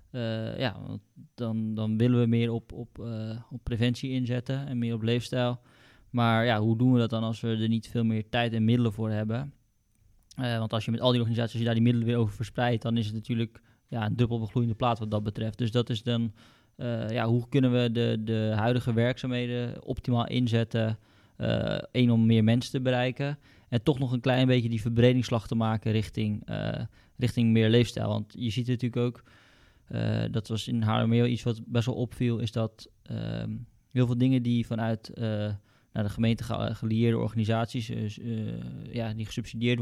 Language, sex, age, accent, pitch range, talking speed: Dutch, male, 20-39, Dutch, 110-120 Hz, 200 wpm